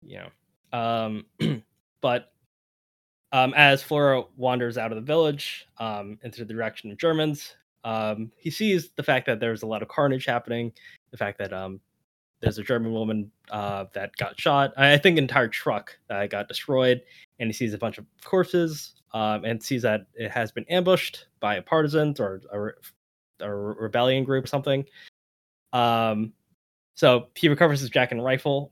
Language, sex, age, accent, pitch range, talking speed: English, male, 10-29, American, 105-135 Hz, 180 wpm